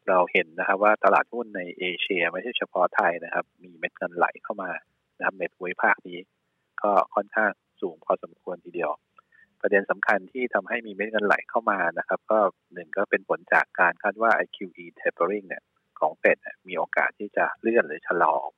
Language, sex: Thai, male